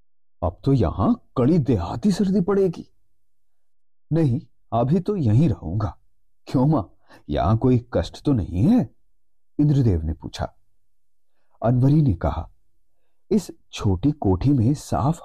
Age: 40-59